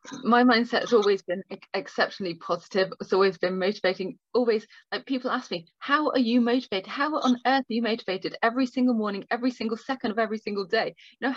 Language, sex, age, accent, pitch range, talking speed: English, female, 30-49, British, 220-260 Hz, 200 wpm